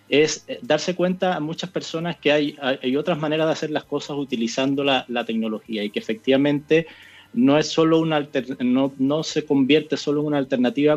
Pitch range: 120-150 Hz